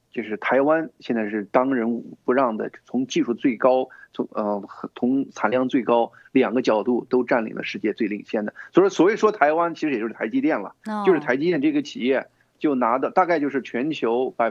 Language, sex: Chinese, male